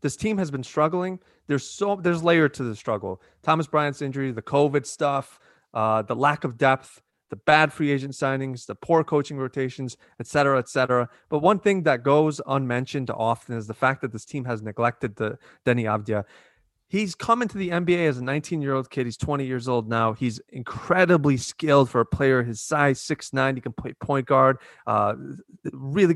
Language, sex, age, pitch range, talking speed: English, male, 30-49, 130-175 Hz, 195 wpm